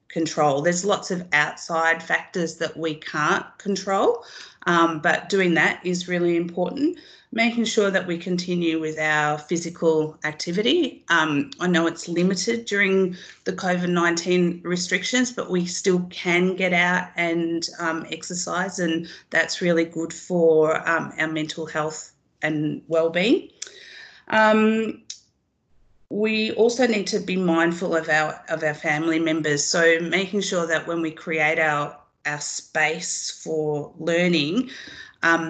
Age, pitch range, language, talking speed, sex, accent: 30-49, 155-185 Hz, English, 140 wpm, female, Australian